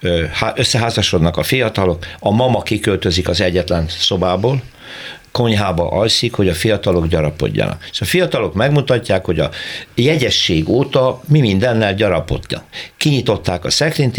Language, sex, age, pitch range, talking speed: Hungarian, male, 60-79, 85-120 Hz, 125 wpm